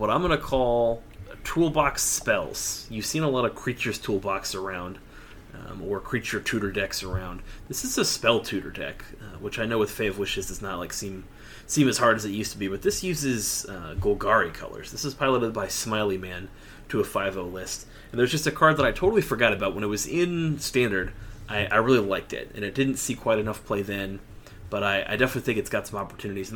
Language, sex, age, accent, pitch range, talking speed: English, male, 30-49, American, 100-125 Hz, 230 wpm